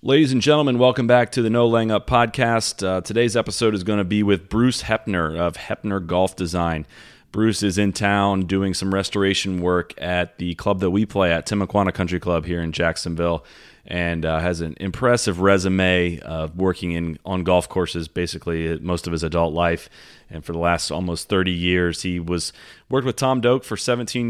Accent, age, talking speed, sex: American, 30-49, 200 wpm, male